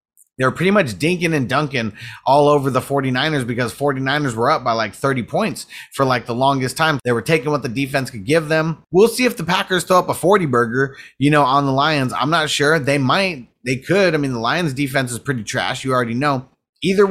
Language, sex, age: English, male, 30-49